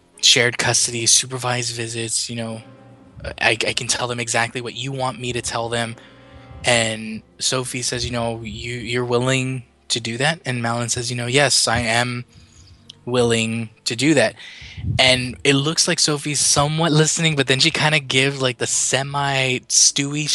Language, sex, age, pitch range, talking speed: English, male, 20-39, 115-130 Hz, 170 wpm